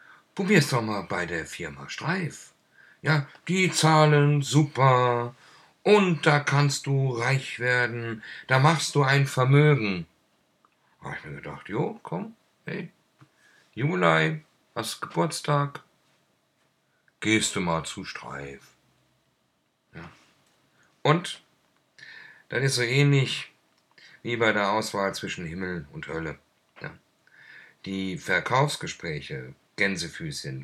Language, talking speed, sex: German, 110 wpm, male